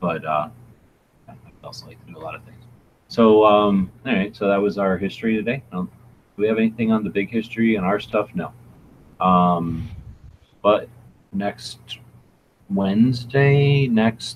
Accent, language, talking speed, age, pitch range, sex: American, English, 165 wpm, 30-49, 95-115 Hz, male